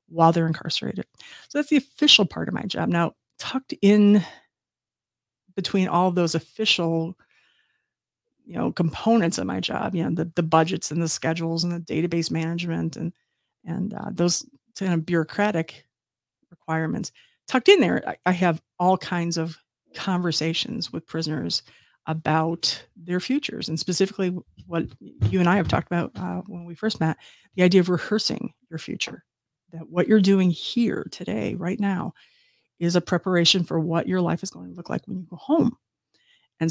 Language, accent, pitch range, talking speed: English, American, 165-205 Hz, 170 wpm